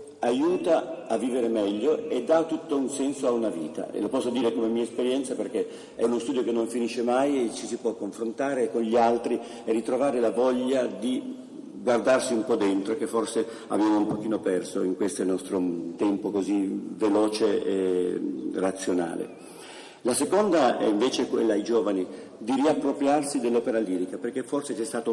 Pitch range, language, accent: 110-140 Hz, Italian, native